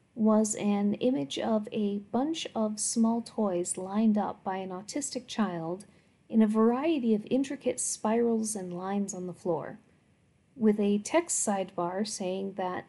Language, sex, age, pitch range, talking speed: English, female, 40-59, 190-235 Hz, 150 wpm